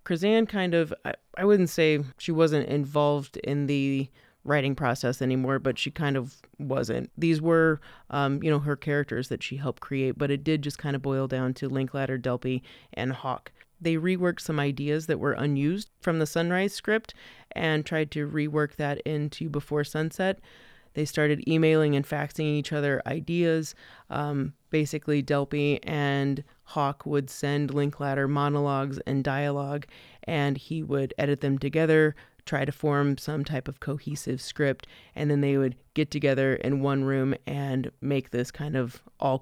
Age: 30-49